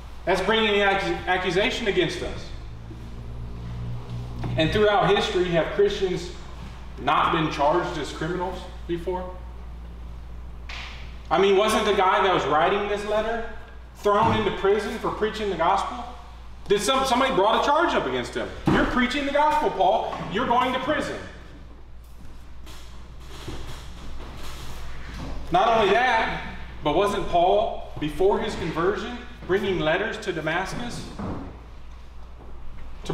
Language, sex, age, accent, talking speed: English, male, 30-49, American, 120 wpm